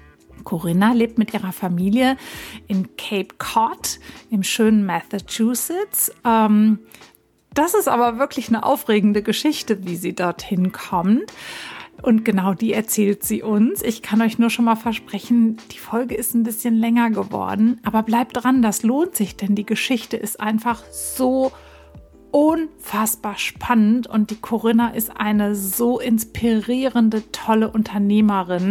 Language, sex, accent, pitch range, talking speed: German, female, German, 210-260 Hz, 140 wpm